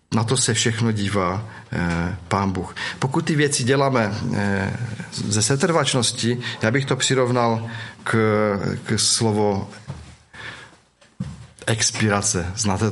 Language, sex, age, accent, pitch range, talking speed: Czech, male, 40-59, native, 105-130 Hz, 110 wpm